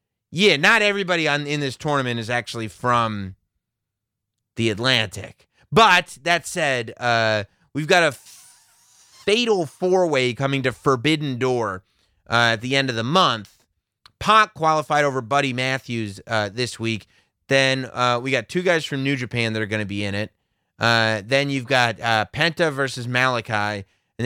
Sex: male